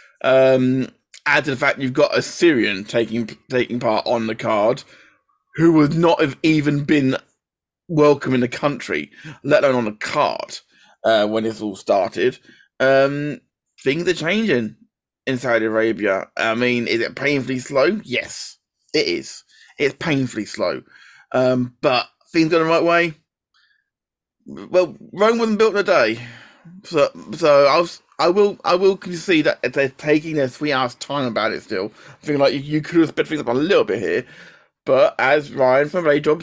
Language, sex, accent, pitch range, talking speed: English, male, British, 130-165 Hz, 175 wpm